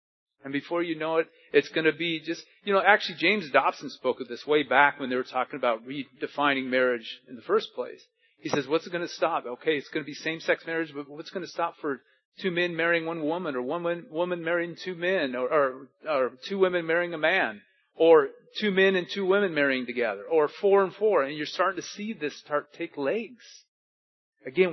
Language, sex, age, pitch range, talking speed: English, male, 40-59, 145-195 Hz, 225 wpm